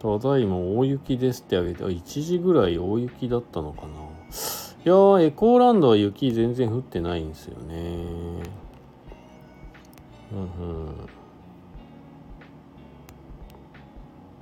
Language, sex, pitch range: Japanese, male, 85-130 Hz